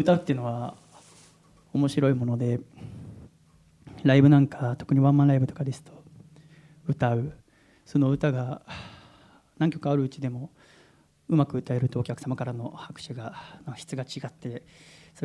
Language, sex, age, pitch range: Japanese, male, 40-59, 130-160 Hz